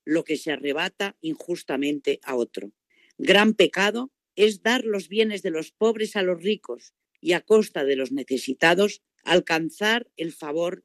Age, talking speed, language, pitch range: 50-69, 155 wpm, Spanish, 150-205 Hz